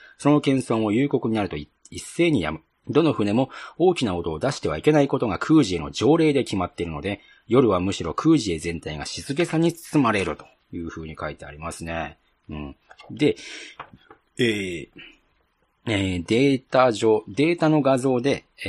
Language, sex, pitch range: Japanese, male, 85-140 Hz